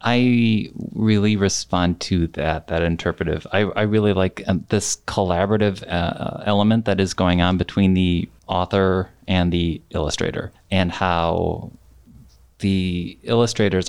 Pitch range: 85-110 Hz